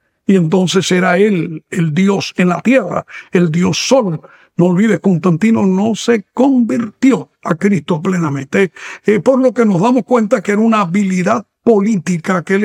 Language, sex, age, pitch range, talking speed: Spanish, male, 60-79, 180-220 Hz, 165 wpm